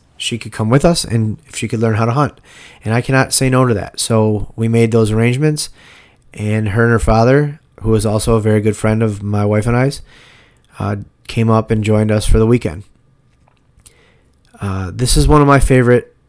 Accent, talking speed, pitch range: American, 215 wpm, 100-115 Hz